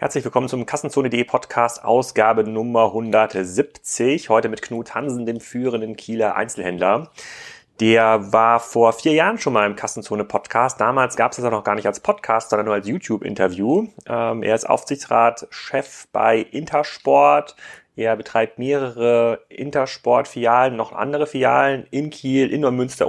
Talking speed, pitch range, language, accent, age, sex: 145 wpm, 110-130 Hz, German, German, 30-49, male